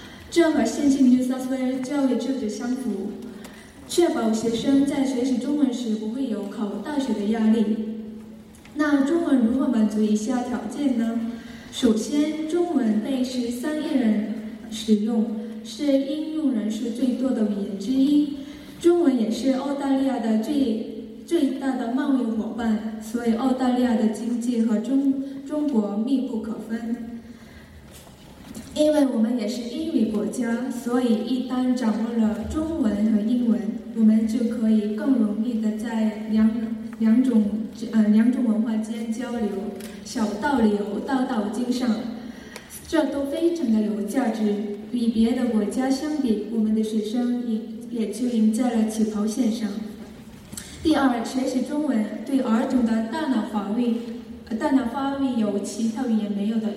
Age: 10-29